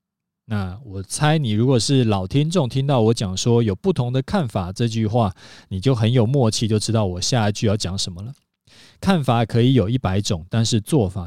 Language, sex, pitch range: Chinese, male, 105-145 Hz